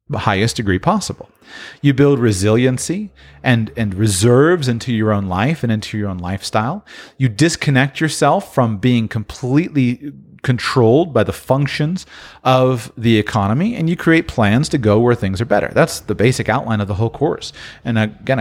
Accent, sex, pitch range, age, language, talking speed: American, male, 110-145 Hz, 30-49, English, 170 wpm